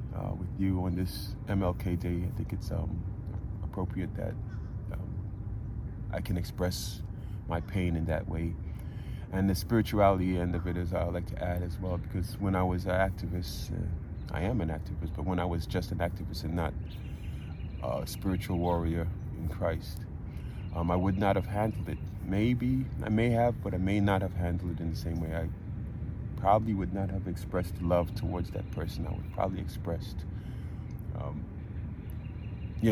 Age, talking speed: 30-49, 180 wpm